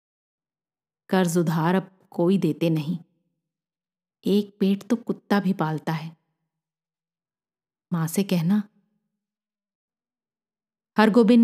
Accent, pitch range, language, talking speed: native, 165-210 Hz, Hindi, 90 wpm